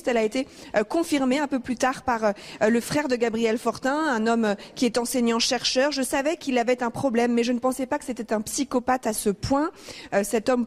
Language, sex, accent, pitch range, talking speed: French, female, French, 220-260 Hz, 240 wpm